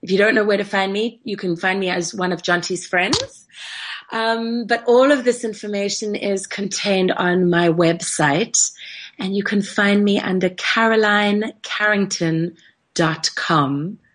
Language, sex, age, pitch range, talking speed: English, female, 30-49, 155-200 Hz, 150 wpm